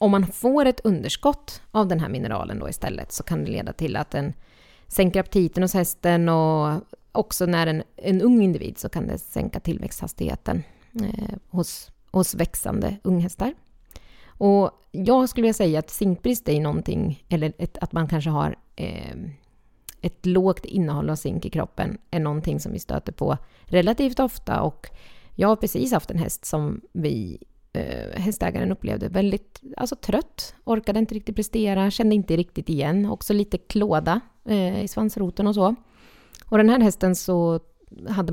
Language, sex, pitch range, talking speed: Swedish, female, 165-215 Hz, 165 wpm